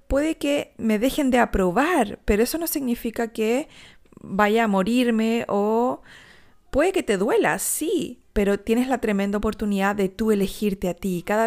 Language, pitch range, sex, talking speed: Spanish, 200-245 Hz, female, 160 wpm